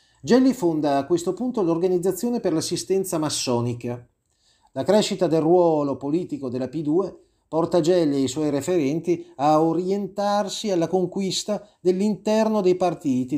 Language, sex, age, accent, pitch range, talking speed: Italian, male, 30-49, native, 145-185 Hz, 130 wpm